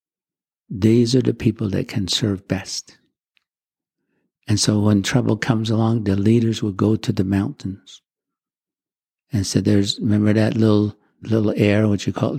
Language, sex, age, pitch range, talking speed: English, male, 50-69, 95-110 Hz, 155 wpm